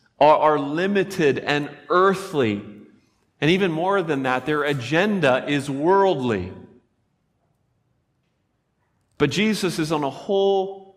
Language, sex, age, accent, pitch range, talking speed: English, male, 40-59, American, 120-150 Hz, 105 wpm